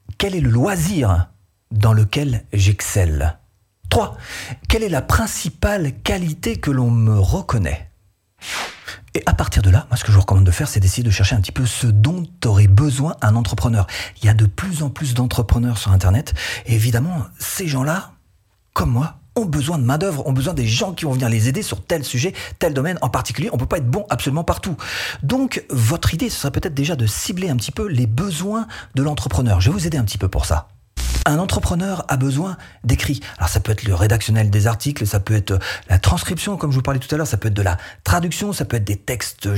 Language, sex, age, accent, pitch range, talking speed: French, male, 40-59, French, 105-145 Hz, 225 wpm